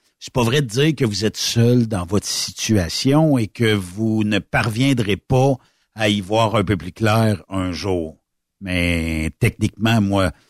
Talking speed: 170 wpm